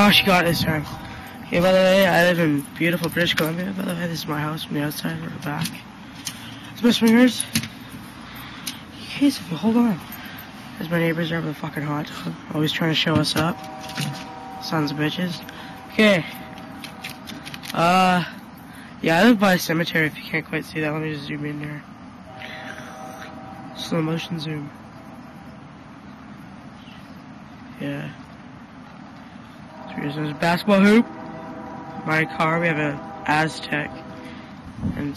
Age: 20-39